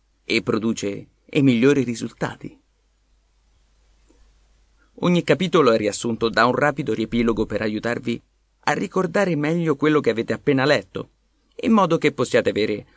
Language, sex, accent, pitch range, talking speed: Italian, male, native, 110-155 Hz, 130 wpm